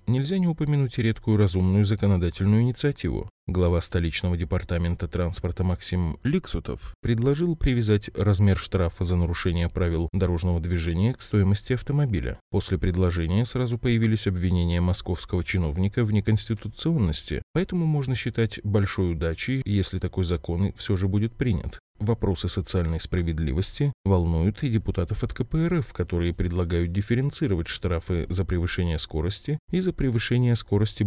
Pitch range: 90-115 Hz